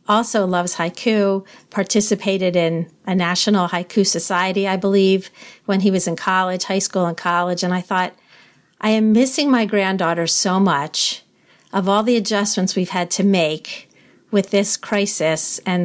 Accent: American